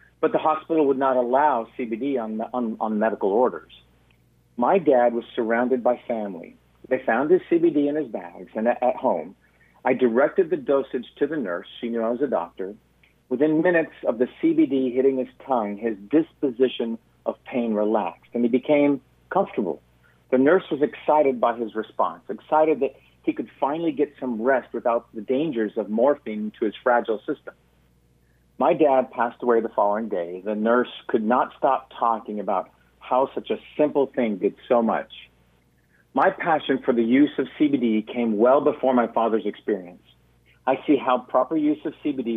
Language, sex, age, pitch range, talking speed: English, male, 50-69, 105-145 Hz, 180 wpm